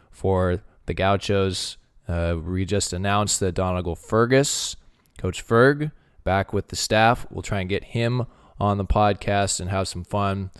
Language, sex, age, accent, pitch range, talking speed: English, male, 20-39, American, 85-100 Hz, 160 wpm